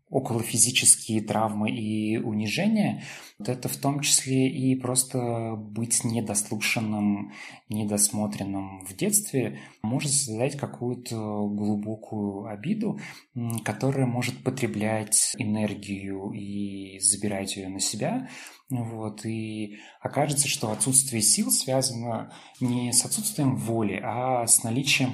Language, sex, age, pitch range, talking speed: Russian, male, 20-39, 105-130 Hz, 105 wpm